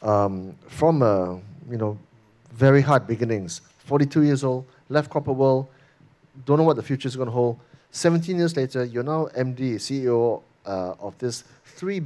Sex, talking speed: male, 165 wpm